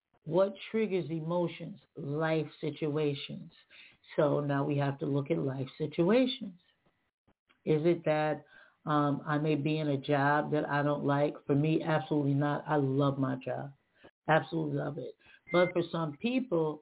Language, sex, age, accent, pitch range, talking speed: English, female, 50-69, American, 145-175 Hz, 155 wpm